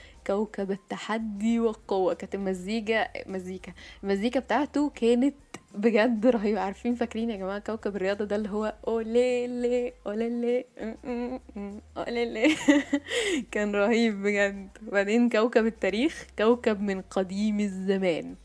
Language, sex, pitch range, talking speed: Arabic, female, 200-250 Hz, 125 wpm